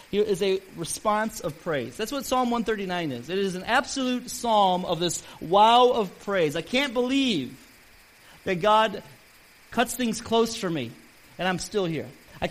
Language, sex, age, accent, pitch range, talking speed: English, male, 30-49, American, 185-250 Hz, 175 wpm